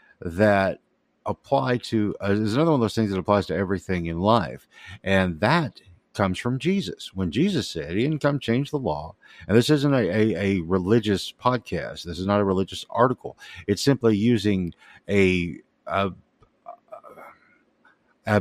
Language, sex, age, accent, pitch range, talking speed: English, male, 50-69, American, 95-135 Hz, 165 wpm